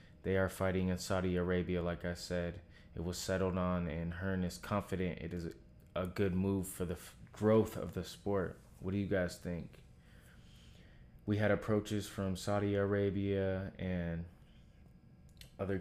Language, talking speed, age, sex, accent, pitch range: English, 155 wpm, 20-39, male, American, 90-95 Hz